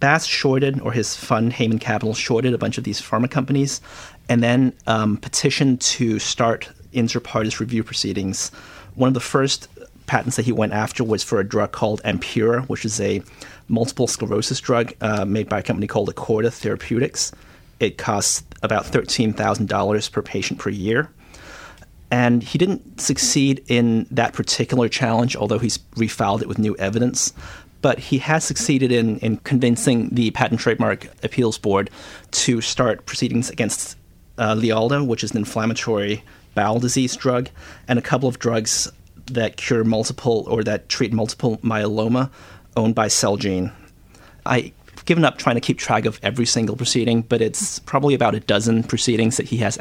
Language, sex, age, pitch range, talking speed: English, male, 30-49, 110-125 Hz, 165 wpm